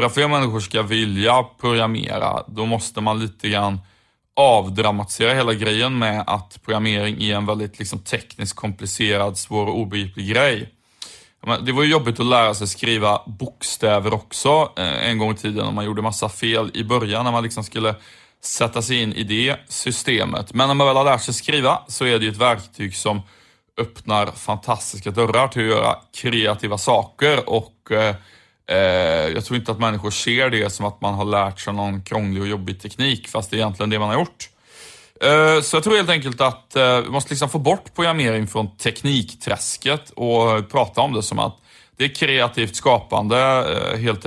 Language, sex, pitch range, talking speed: Swedish, male, 105-125 Hz, 185 wpm